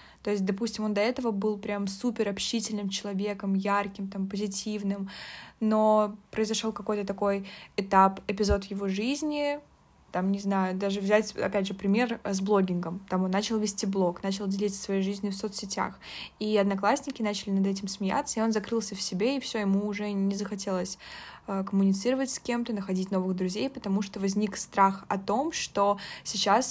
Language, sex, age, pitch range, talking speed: Russian, female, 20-39, 195-215 Hz, 170 wpm